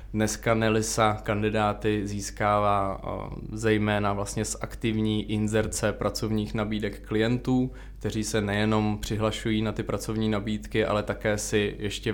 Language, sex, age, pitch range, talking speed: Czech, male, 20-39, 105-110 Hz, 120 wpm